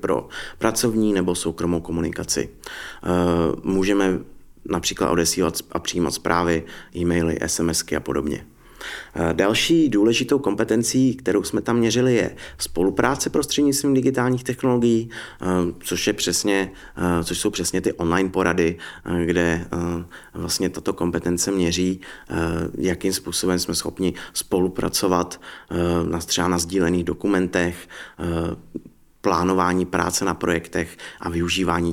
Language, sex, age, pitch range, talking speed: Czech, male, 30-49, 85-100 Hz, 105 wpm